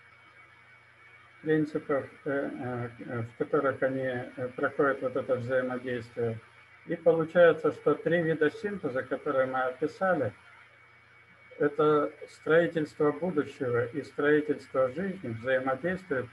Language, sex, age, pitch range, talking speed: Russian, male, 50-69, 125-155 Hz, 90 wpm